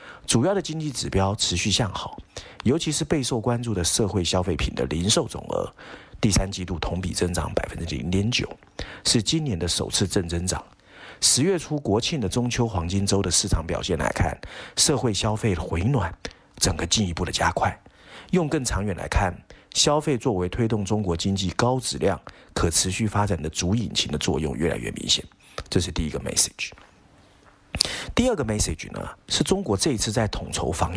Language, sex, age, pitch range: Chinese, male, 50-69, 90-120 Hz